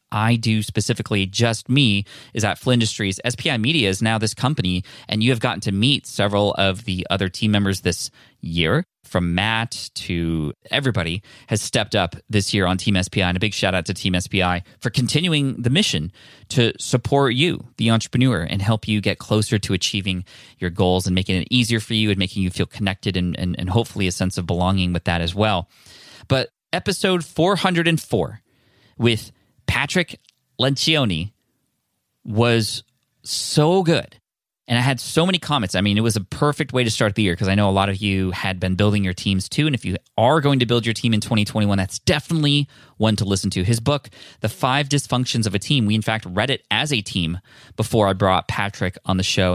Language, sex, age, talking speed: English, male, 20-39, 205 wpm